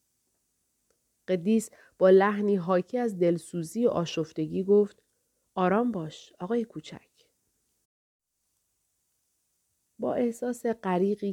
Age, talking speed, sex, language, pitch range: 30-49, 85 wpm, female, Persian, 165-215 Hz